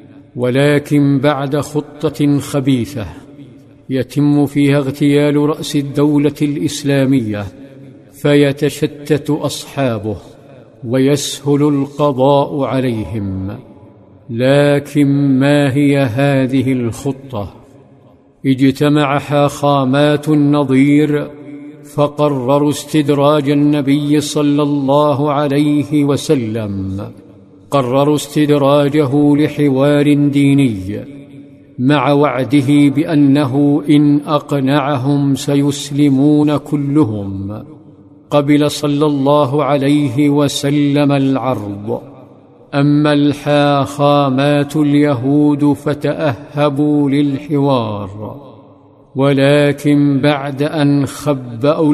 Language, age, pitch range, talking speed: Arabic, 50-69, 135-145 Hz, 65 wpm